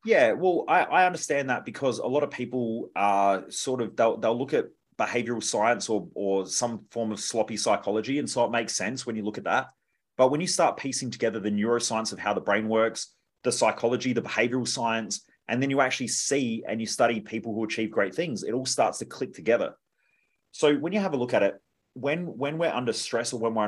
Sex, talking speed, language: male, 230 wpm, English